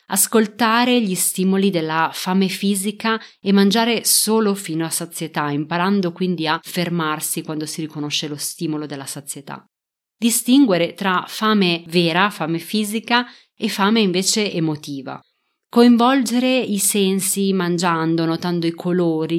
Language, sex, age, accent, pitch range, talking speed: Italian, female, 30-49, native, 160-210 Hz, 125 wpm